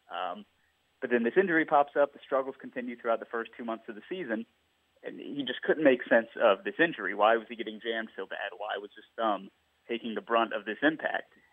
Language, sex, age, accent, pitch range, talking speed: English, male, 30-49, American, 105-125 Hz, 230 wpm